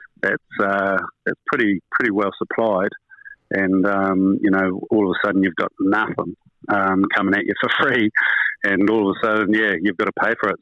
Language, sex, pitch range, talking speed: English, male, 100-115 Hz, 210 wpm